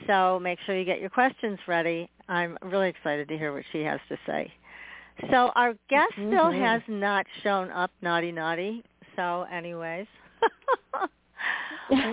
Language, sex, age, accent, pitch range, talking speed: English, female, 50-69, American, 175-240 Hz, 150 wpm